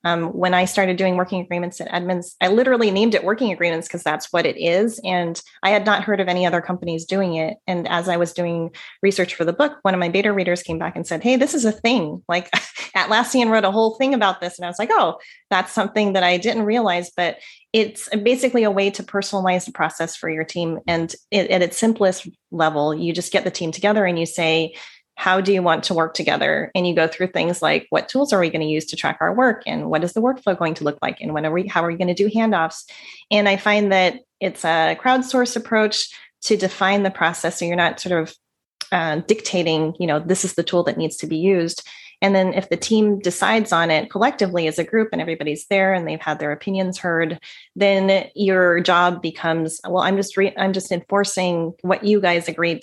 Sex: female